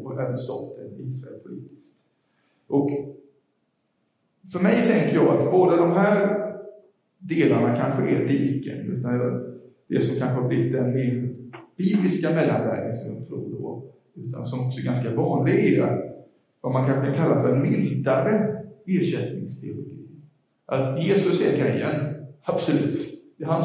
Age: 50-69